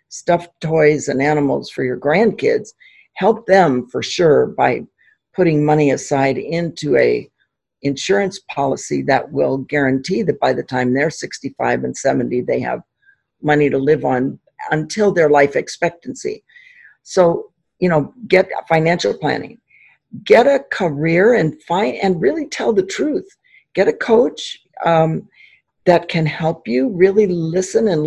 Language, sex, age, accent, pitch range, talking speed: English, female, 60-79, American, 140-190 Hz, 140 wpm